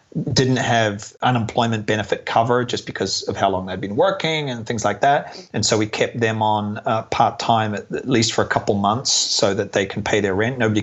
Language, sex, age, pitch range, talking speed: English, male, 30-49, 110-135 Hz, 220 wpm